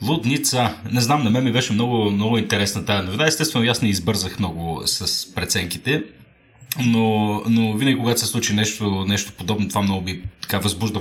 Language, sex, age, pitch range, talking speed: Bulgarian, male, 30-49, 95-115 Hz, 180 wpm